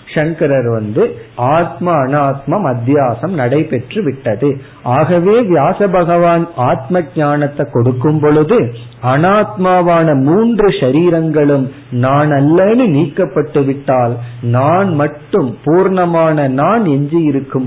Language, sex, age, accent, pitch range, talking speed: Tamil, male, 50-69, native, 120-160 Hz, 70 wpm